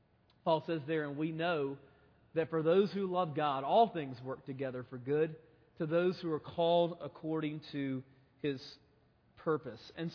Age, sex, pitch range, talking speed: 40-59, male, 145-225 Hz, 165 wpm